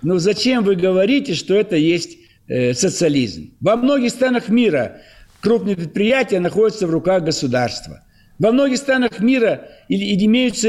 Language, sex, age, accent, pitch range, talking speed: Russian, male, 60-79, native, 185-245 Hz, 130 wpm